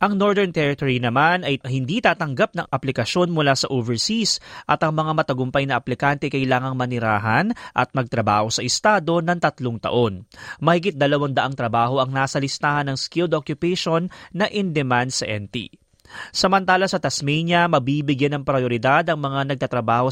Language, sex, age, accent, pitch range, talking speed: Filipino, male, 20-39, native, 130-175 Hz, 145 wpm